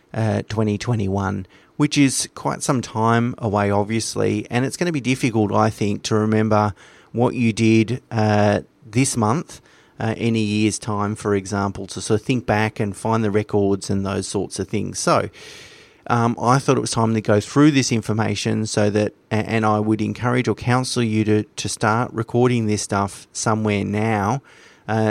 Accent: Australian